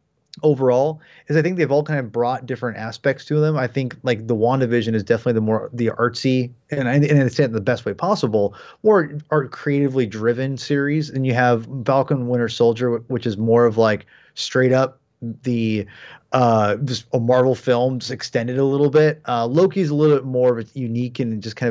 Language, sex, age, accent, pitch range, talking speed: English, male, 30-49, American, 120-155 Hz, 205 wpm